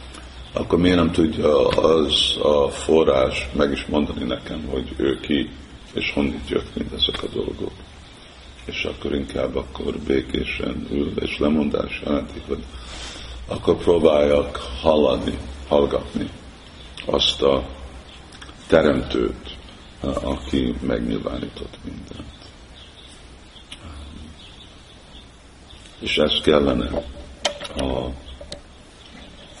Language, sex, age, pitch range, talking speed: Hungarian, male, 60-79, 70-75 Hz, 90 wpm